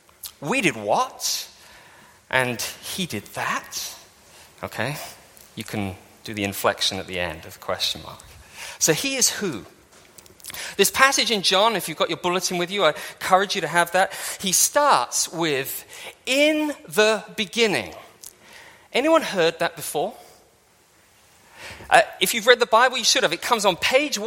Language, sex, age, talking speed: English, male, 30-49, 160 wpm